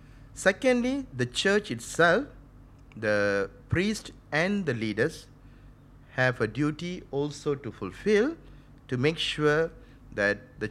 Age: 50-69